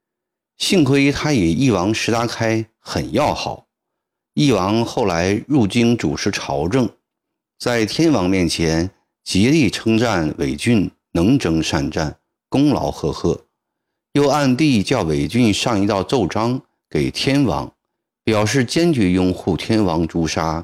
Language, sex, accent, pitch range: Chinese, male, native, 90-135 Hz